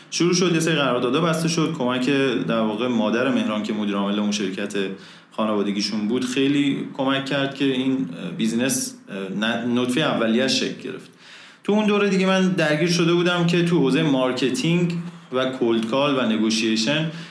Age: 30-49